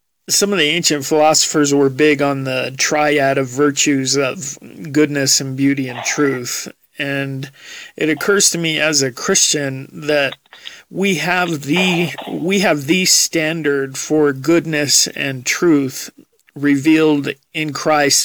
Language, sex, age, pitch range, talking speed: English, male, 40-59, 140-160 Hz, 135 wpm